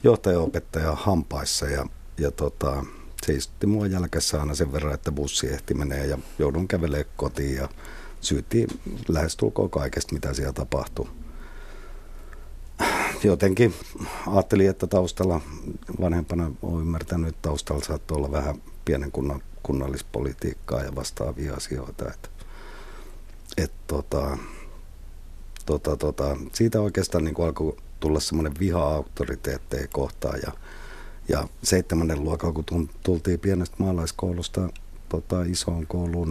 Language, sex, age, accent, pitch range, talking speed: Finnish, male, 50-69, native, 75-90 Hz, 115 wpm